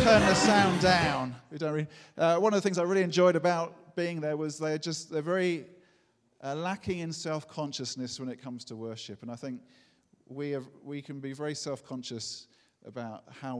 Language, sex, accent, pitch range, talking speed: English, male, British, 110-135 Hz, 195 wpm